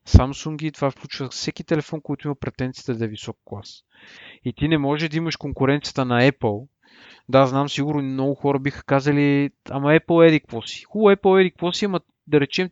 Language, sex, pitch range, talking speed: Bulgarian, male, 130-165 Hz, 190 wpm